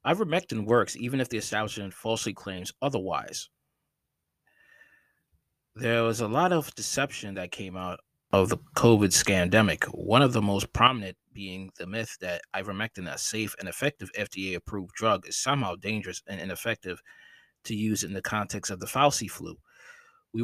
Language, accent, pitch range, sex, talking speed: English, American, 100-125 Hz, male, 155 wpm